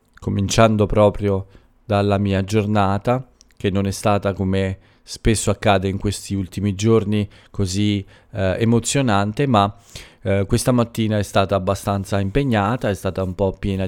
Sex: male